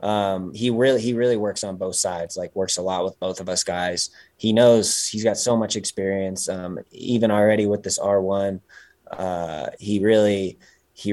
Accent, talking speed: American, 190 wpm